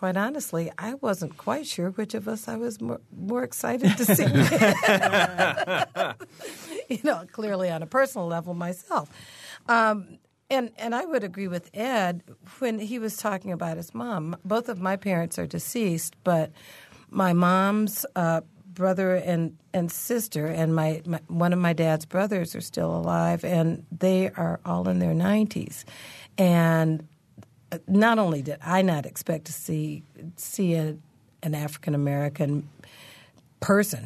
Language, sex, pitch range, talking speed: English, female, 155-190 Hz, 150 wpm